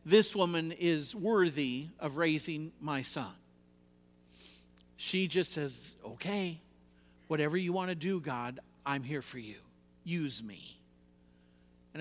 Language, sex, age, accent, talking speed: English, male, 50-69, American, 125 wpm